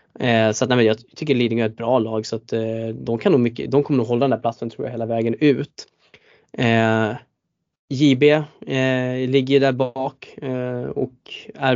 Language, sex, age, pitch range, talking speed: Swedish, male, 20-39, 115-145 Hz, 190 wpm